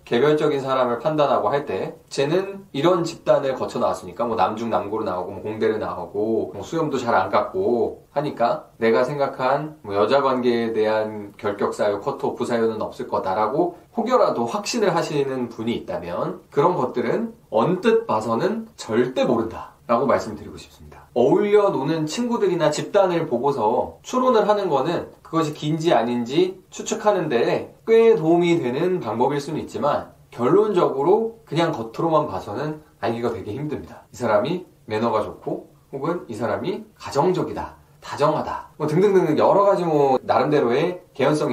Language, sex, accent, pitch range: Korean, male, native, 120-180 Hz